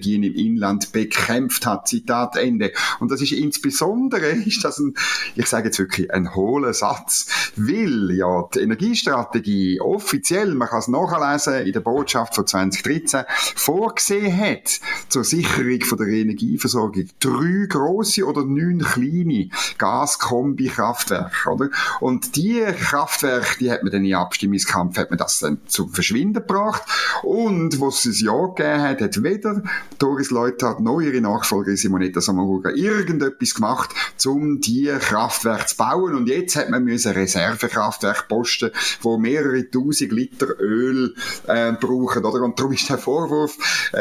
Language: German